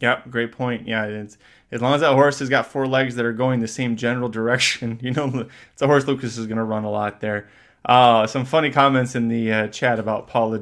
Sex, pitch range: male, 115-135 Hz